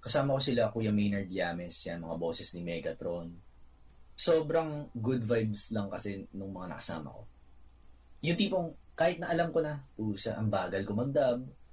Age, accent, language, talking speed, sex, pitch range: 20-39, native, Filipino, 170 wpm, male, 100-150 Hz